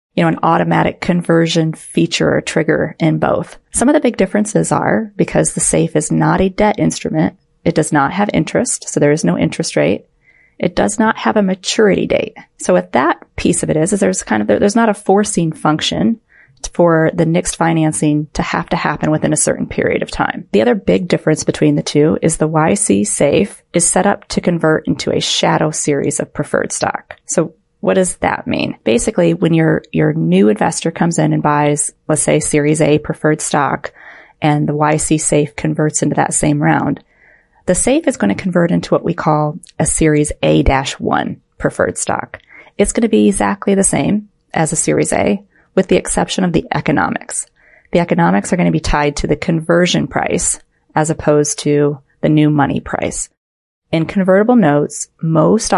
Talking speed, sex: 195 wpm, female